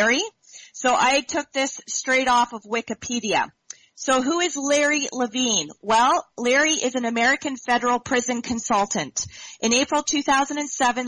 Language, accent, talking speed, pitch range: English, American, 130 wpm, 215-260 Hz